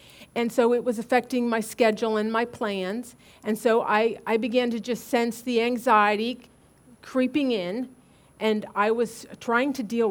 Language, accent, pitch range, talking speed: English, American, 205-255 Hz, 165 wpm